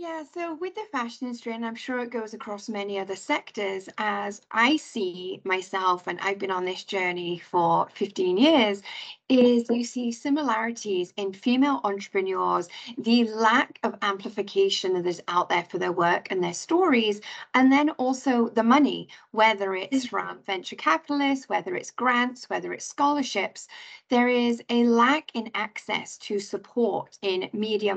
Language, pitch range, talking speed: English, 200-255 Hz, 160 wpm